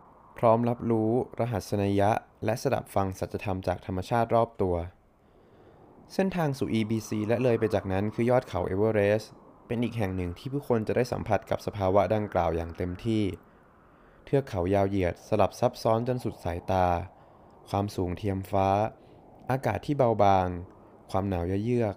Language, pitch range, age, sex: Thai, 95-115 Hz, 20-39, male